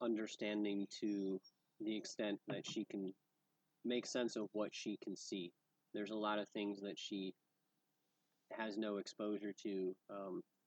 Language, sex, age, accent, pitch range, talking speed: English, male, 30-49, American, 95-105 Hz, 145 wpm